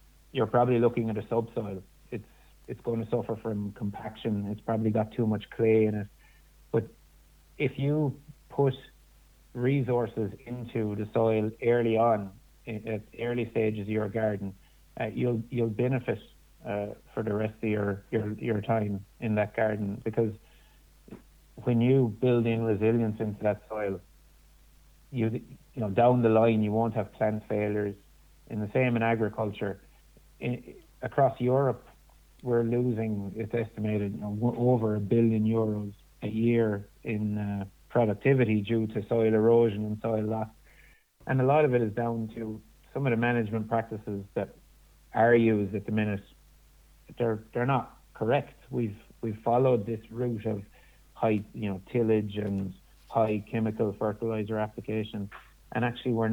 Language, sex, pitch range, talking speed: English, male, 105-120 Hz, 155 wpm